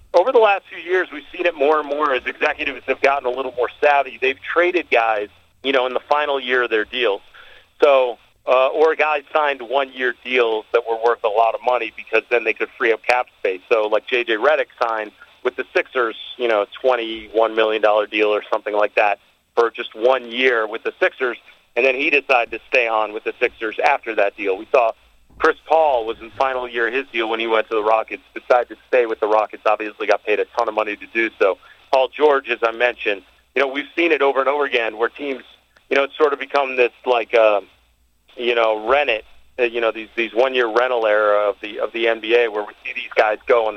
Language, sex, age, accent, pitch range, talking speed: English, male, 40-59, American, 115-150 Hz, 235 wpm